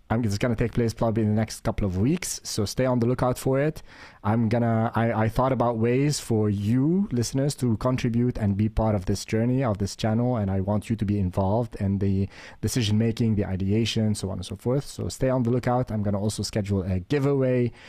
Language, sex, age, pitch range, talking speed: English, male, 30-49, 105-125 Hz, 230 wpm